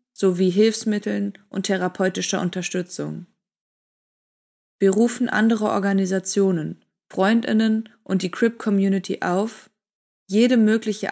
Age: 20-39